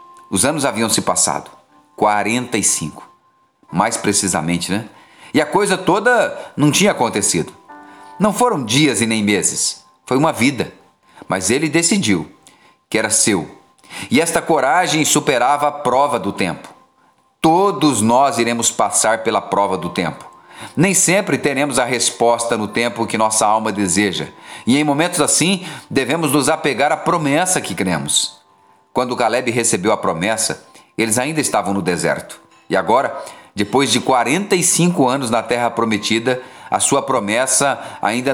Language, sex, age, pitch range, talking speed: Portuguese, male, 40-59, 105-150 Hz, 145 wpm